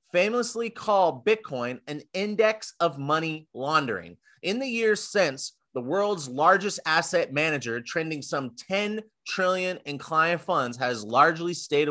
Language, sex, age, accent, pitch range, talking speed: English, male, 30-49, American, 130-185 Hz, 135 wpm